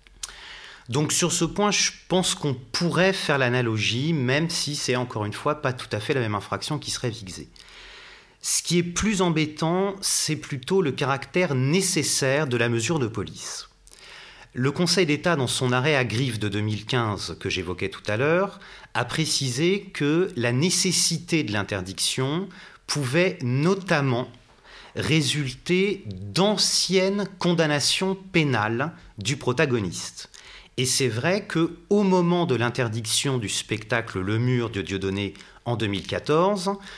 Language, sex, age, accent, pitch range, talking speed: French, male, 30-49, French, 120-175 Hz, 140 wpm